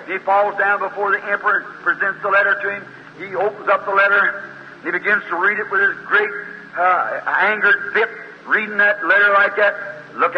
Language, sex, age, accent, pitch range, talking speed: English, male, 50-69, American, 195-215 Hz, 200 wpm